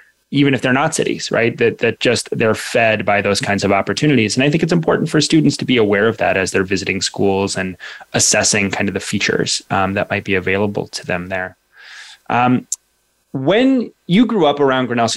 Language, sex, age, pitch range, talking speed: English, male, 20-39, 105-140 Hz, 215 wpm